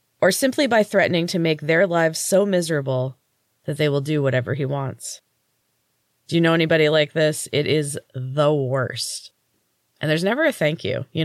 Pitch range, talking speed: 130-170 Hz, 180 wpm